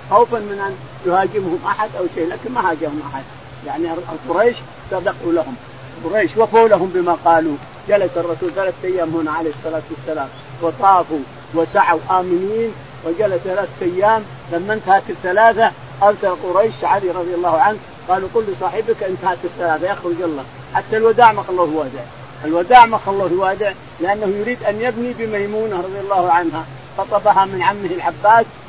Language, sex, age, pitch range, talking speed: Arabic, male, 50-69, 165-215 Hz, 150 wpm